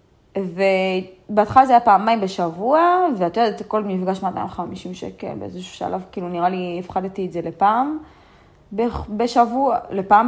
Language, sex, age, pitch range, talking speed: Hebrew, female, 20-39, 185-255 Hz, 150 wpm